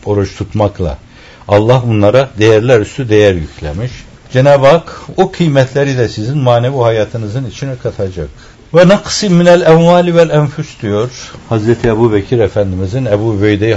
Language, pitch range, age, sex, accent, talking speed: Turkish, 95-130 Hz, 60-79, male, native, 135 wpm